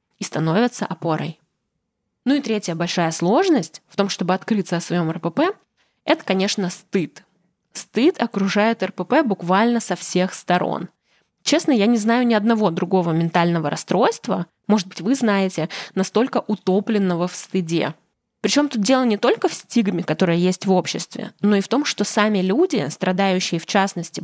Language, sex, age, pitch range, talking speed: Russian, female, 20-39, 180-225 Hz, 155 wpm